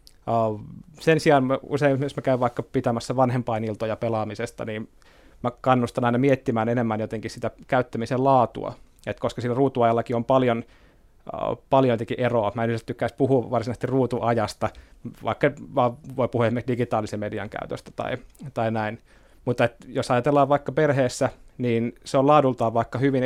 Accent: native